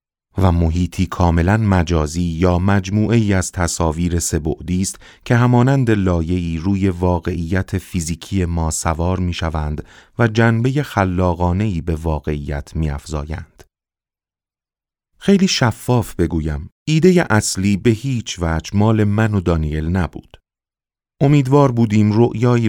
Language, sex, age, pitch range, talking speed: Persian, male, 30-49, 85-105 Hz, 110 wpm